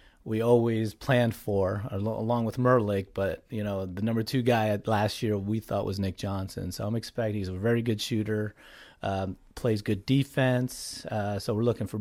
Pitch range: 100-115 Hz